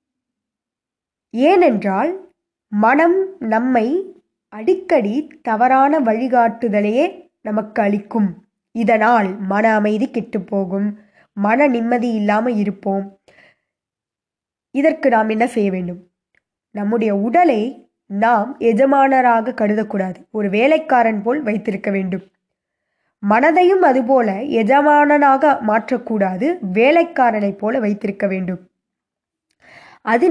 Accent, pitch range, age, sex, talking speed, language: native, 210-270 Hz, 20-39, female, 80 wpm, Tamil